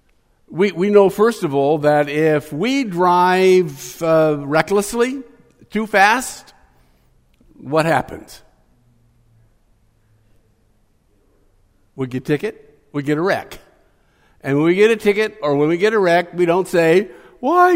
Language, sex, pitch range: English, male, 120-200 Hz